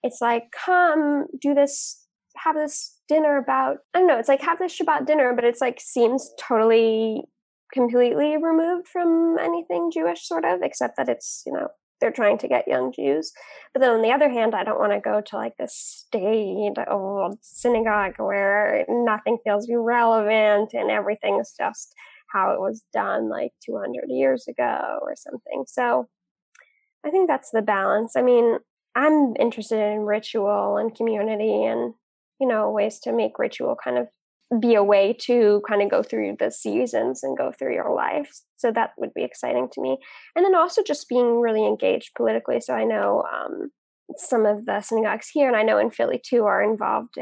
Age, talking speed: 10-29, 185 wpm